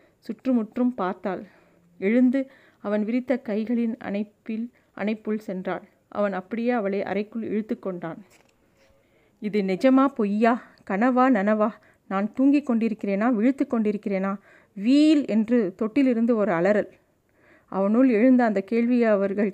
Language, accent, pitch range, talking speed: Tamil, native, 200-240 Hz, 110 wpm